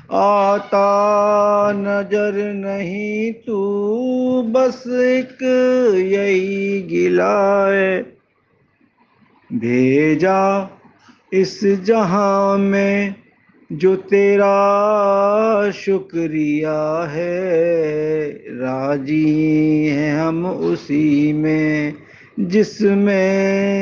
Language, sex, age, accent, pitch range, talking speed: Hindi, male, 50-69, native, 150-200 Hz, 55 wpm